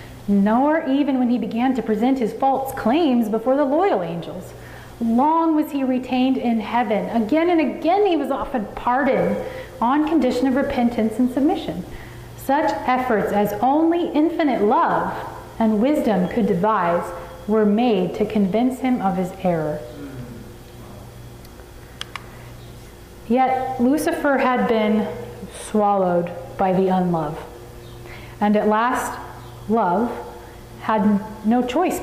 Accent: American